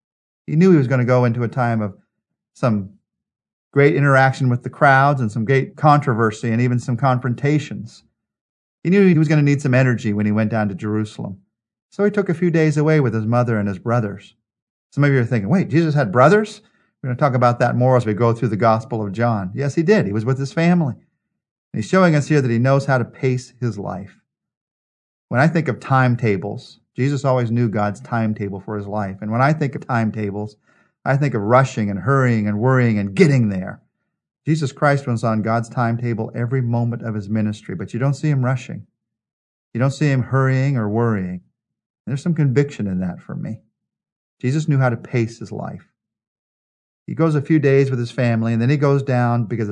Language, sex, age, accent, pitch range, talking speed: English, male, 40-59, American, 110-140 Hz, 215 wpm